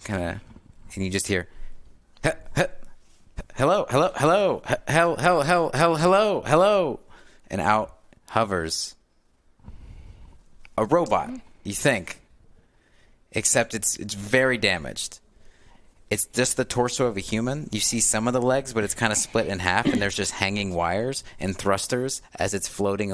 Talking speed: 155 wpm